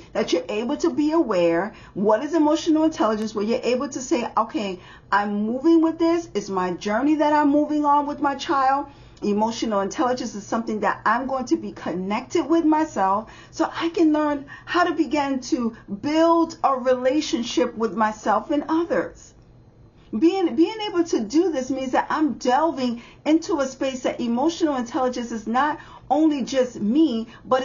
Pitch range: 205-315 Hz